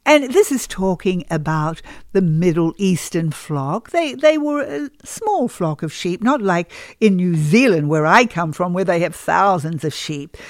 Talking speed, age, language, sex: 185 wpm, 60-79, English, female